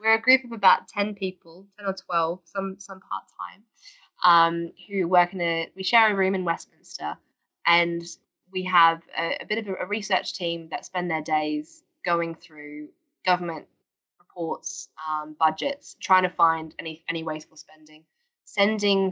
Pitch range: 160-185 Hz